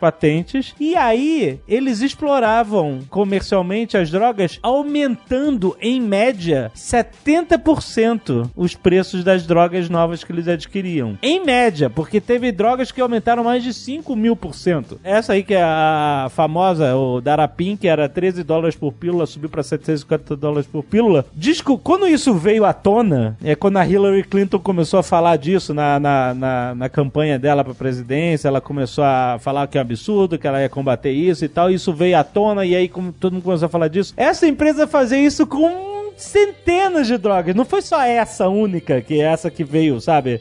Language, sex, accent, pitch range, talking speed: Portuguese, male, Brazilian, 160-250 Hz, 180 wpm